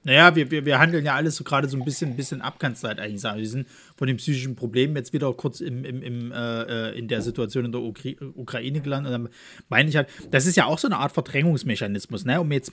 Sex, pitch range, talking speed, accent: male, 115-140 Hz, 235 wpm, German